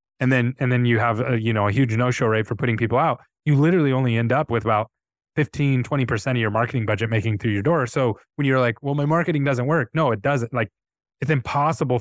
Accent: American